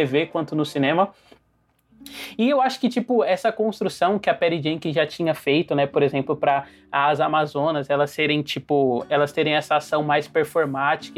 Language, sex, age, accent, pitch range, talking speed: Portuguese, male, 20-39, Brazilian, 145-190 Hz, 175 wpm